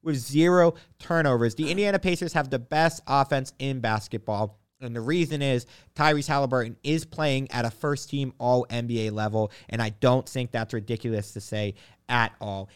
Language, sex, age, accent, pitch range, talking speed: English, male, 30-49, American, 115-150 Hz, 165 wpm